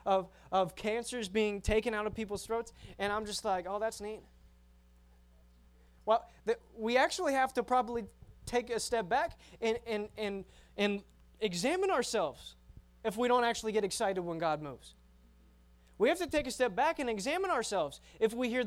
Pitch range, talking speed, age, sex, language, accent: 145-235 Hz, 175 wpm, 20-39, male, English, American